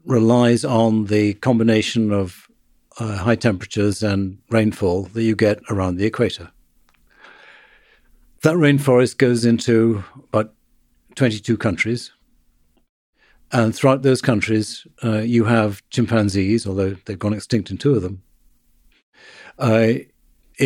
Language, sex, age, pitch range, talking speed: English, male, 60-79, 105-130 Hz, 115 wpm